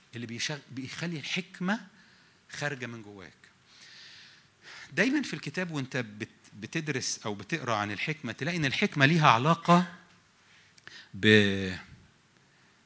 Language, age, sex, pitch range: English, 50-69, male, 110-160 Hz